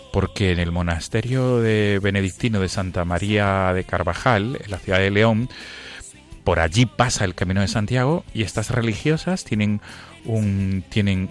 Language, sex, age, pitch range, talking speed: Spanish, male, 30-49, 90-115 Hz, 155 wpm